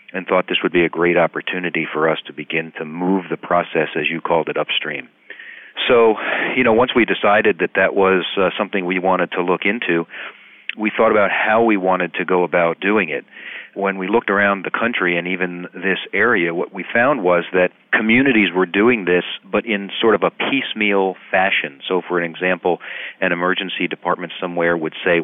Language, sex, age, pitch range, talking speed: English, male, 40-59, 85-95 Hz, 200 wpm